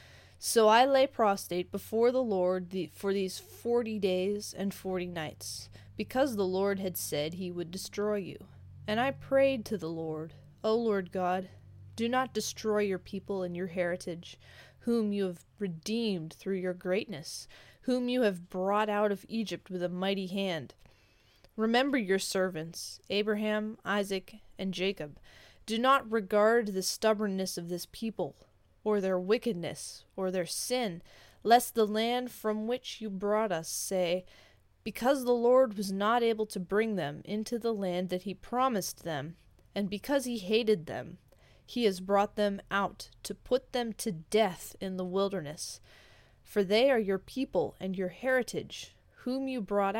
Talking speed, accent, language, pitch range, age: 160 wpm, American, English, 180-220 Hz, 20-39